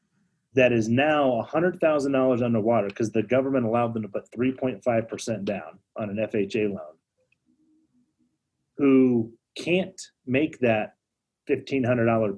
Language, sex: English, male